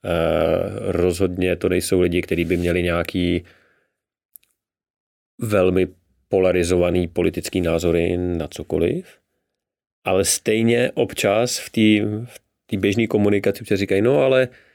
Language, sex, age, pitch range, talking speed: Czech, male, 30-49, 90-105 Hz, 100 wpm